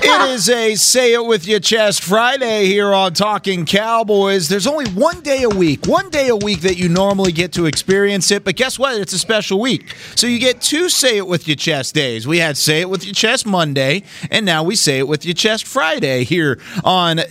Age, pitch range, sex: 30-49, 140-195 Hz, male